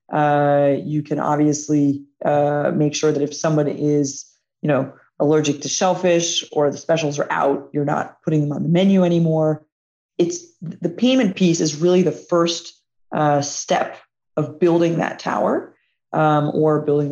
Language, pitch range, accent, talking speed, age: English, 145-170 Hz, American, 160 wpm, 30-49